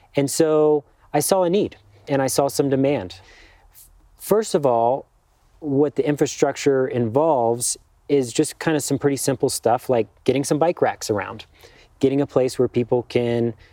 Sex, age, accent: male, 30-49, American